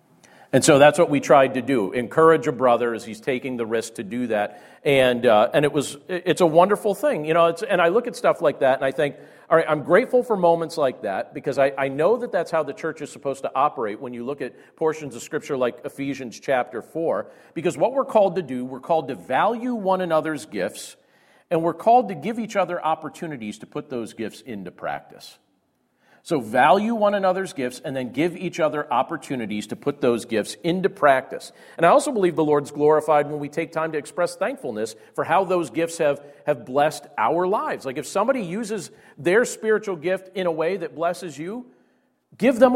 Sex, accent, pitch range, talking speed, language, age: male, American, 140-185 Hz, 220 wpm, English, 40-59